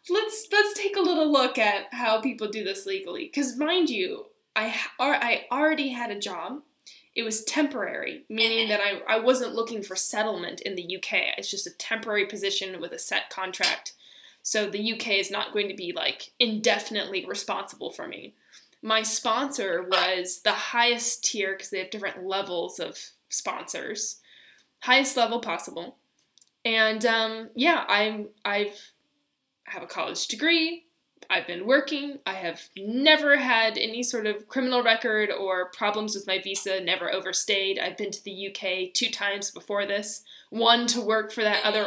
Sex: female